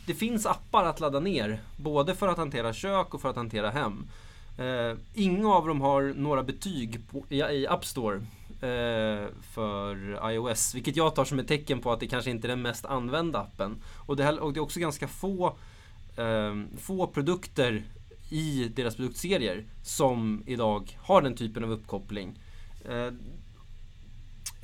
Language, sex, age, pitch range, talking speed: Swedish, male, 20-39, 110-165 Hz, 170 wpm